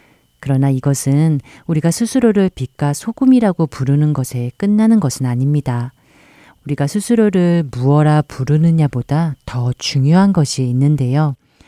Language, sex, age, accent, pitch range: Korean, female, 40-59, native, 130-175 Hz